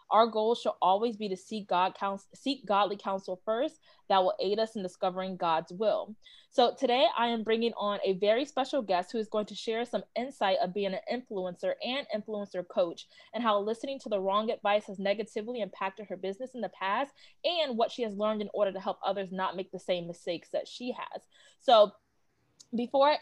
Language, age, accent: English, 20-39, American